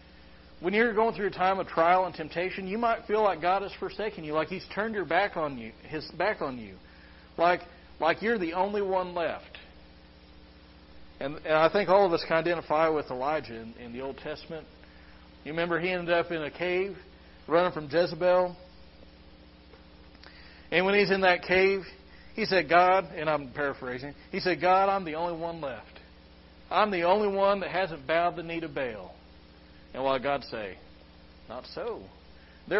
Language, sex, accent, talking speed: English, male, American, 185 wpm